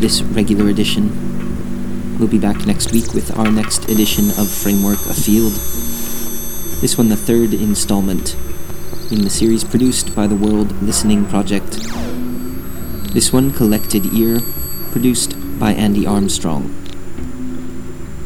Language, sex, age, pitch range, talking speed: English, male, 30-49, 100-120 Hz, 120 wpm